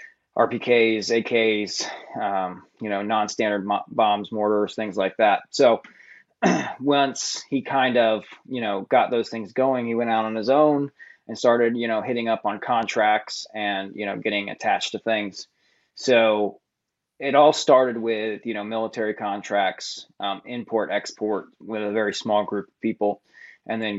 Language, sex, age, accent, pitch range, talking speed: English, male, 20-39, American, 105-120 Hz, 160 wpm